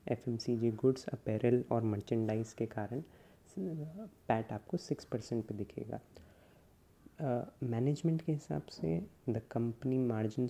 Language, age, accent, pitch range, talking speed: Hindi, 20-39, native, 110-125 Hz, 130 wpm